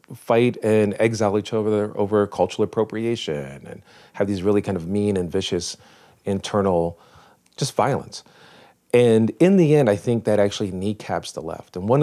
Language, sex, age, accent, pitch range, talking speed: English, male, 40-59, American, 85-105 Hz, 165 wpm